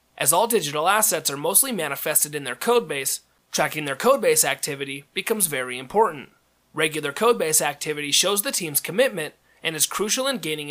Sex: male